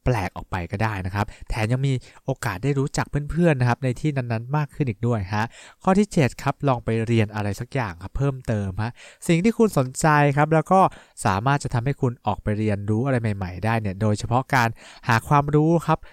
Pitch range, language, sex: 110-150 Hz, English, male